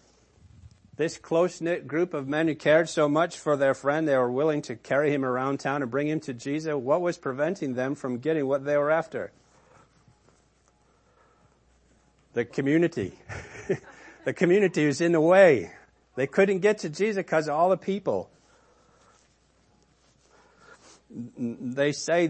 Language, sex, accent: English, male, American